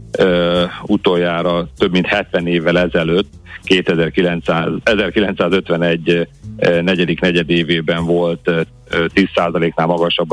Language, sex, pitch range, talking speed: Hungarian, male, 85-95 Hz, 80 wpm